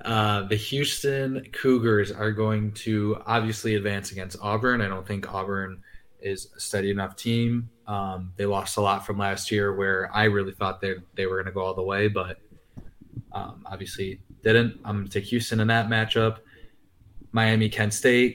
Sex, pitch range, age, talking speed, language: male, 95-110 Hz, 20-39, 185 wpm, English